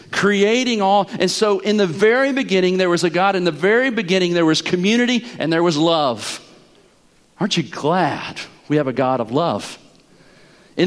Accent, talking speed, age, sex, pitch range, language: American, 180 wpm, 40-59, male, 155-215 Hz, English